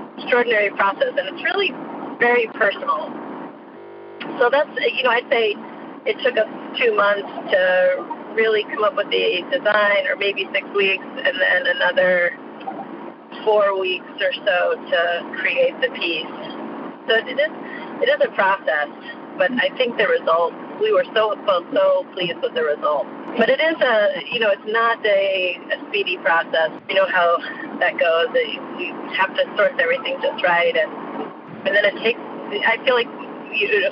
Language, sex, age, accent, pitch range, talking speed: English, female, 40-59, American, 230-315 Hz, 170 wpm